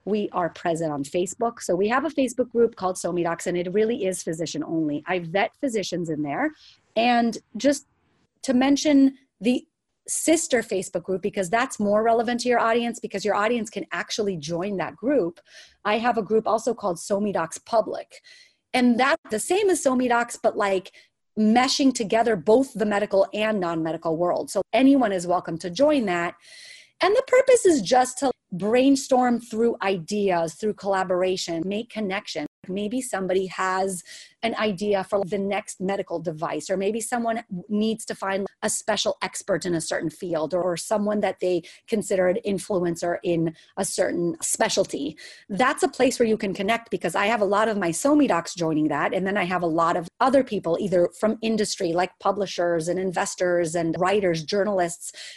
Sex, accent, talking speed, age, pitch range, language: female, American, 175 wpm, 30-49, 180-235 Hz, English